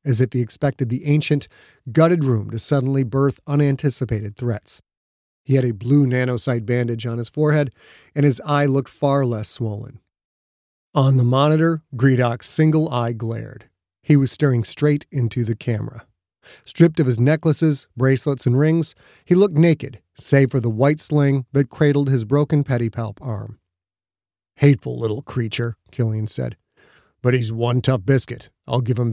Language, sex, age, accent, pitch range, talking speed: English, male, 40-59, American, 110-140 Hz, 160 wpm